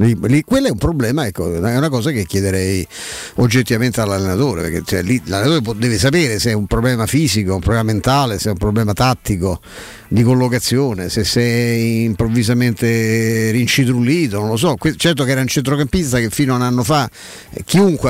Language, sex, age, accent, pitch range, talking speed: Italian, male, 50-69, native, 110-145 Hz, 170 wpm